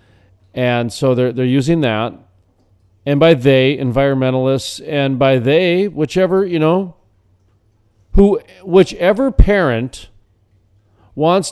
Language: English